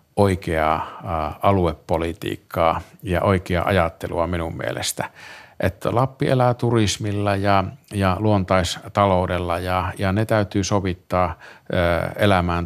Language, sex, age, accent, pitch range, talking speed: Finnish, male, 50-69, native, 85-105 Hz, 95 wpm